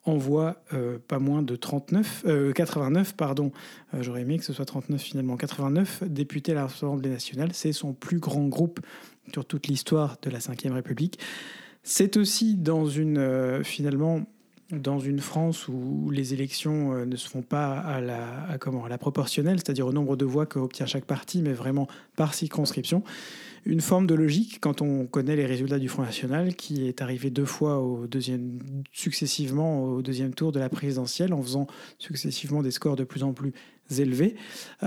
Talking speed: 190 wpm